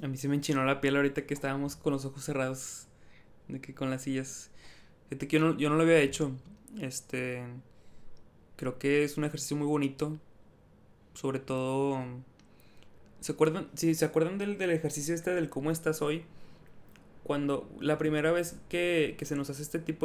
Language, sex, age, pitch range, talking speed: Spanish, male, 20-39, 135-155 Hz, 190 wpm